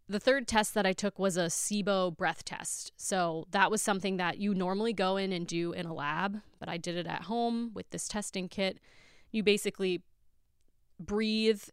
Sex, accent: female, American